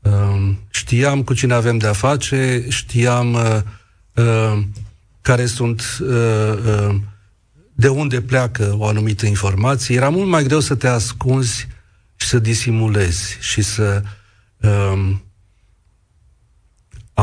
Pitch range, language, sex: 105-125 Hz, Romanian, male